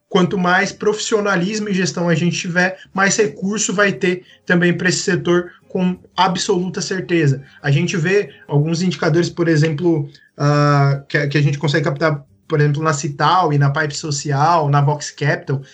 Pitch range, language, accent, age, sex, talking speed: 155-200 Hz, Portuguese, Brazilian, 20-39, male, 165 wpm